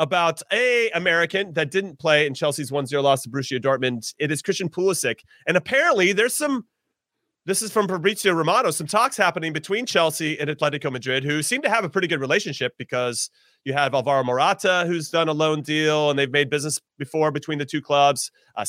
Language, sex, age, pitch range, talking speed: English, male, 30-49, 150-195 Hz, 200 wpm